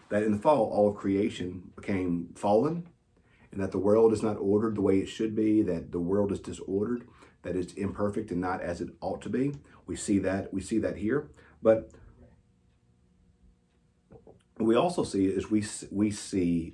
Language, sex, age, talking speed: English, male, 40-59, 185 wpm